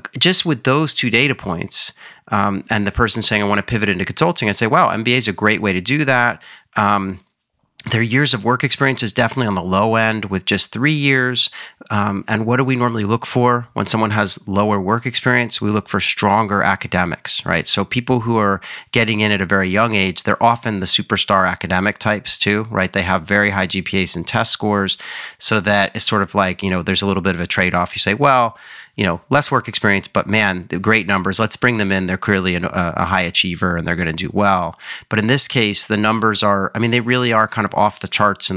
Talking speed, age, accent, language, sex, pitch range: 240 wpm, 30-49, American, English, male, 95-115 Hz